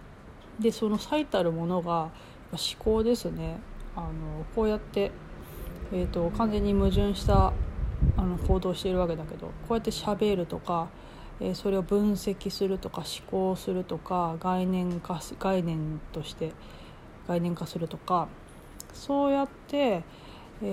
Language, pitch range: Japanese, 175-220 Hz